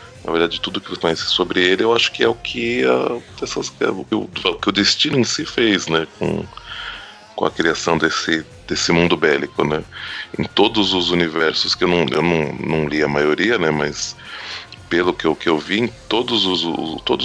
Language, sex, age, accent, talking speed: Portuguese, male, 20-39, Brazilian, 175 wpm